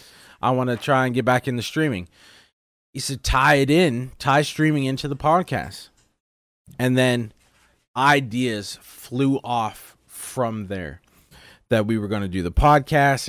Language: English